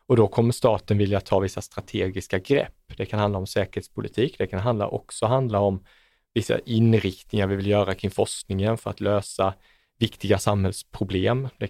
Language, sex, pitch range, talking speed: Swedish, male, 100-115 Hz, 170 wpm